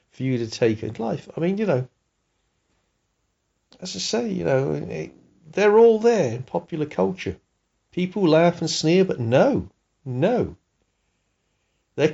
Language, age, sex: English, 50-69, male